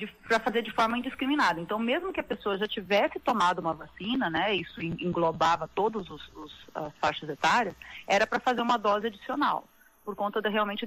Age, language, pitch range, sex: 30-49, Portuguese, 185-255 Hz, female